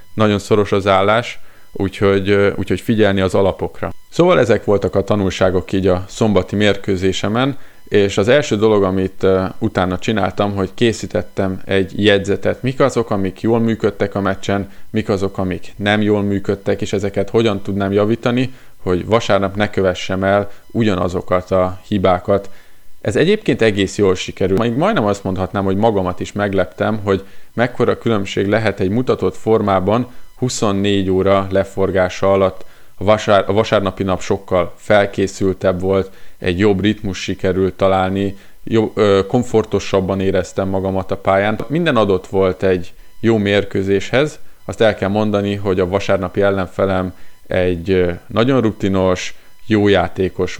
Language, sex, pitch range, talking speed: Hungarian, male, 95-105 Hz, 135 wpm